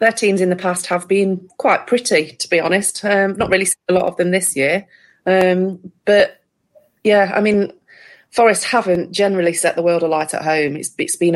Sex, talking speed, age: female, 205 wpm, 30-49